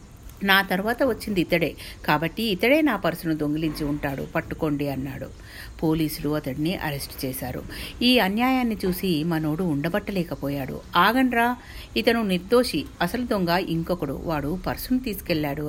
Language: Telugu